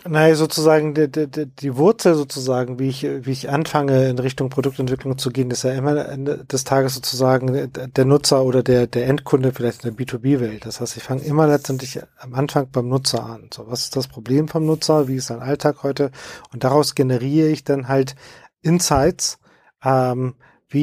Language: German